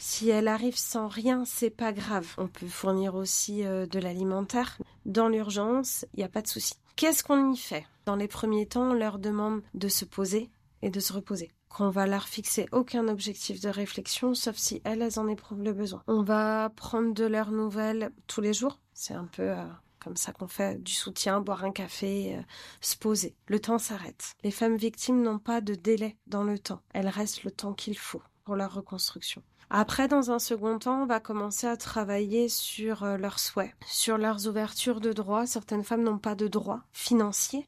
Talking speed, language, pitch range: 210 wpm, French, 195-220 Hz